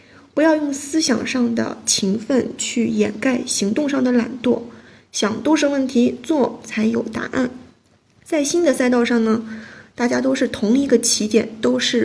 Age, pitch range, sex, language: 20-39, 225-270 Hz, female, Chinese